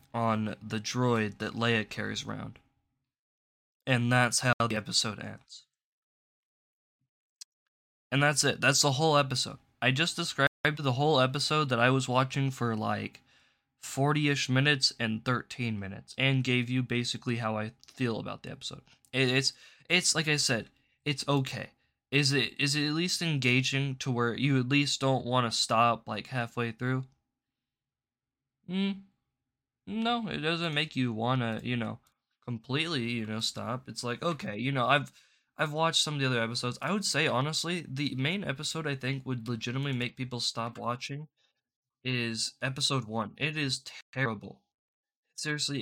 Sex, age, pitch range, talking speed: male, 20-39, 120-145 Hz, 160 wpm